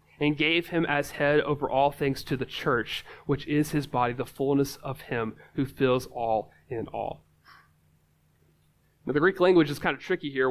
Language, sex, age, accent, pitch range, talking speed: English, male, 30-49, American, 140-195 Hz, 190 wpm